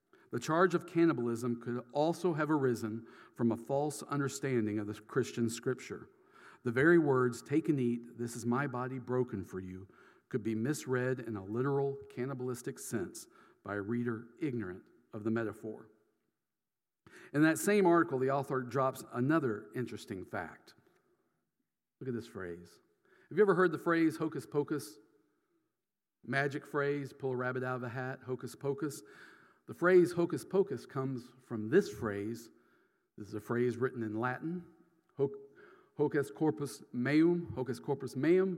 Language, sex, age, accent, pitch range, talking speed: English, male, 50-69, American, 115-150 Hz, 140 wpm